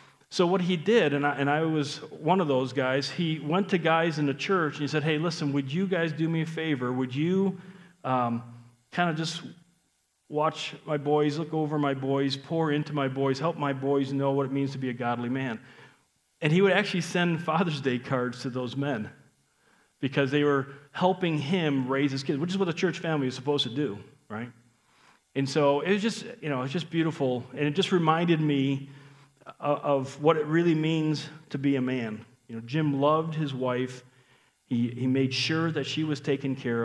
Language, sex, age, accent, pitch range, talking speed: English, male, 40-59, American, 125-155 Hz, 215 wpm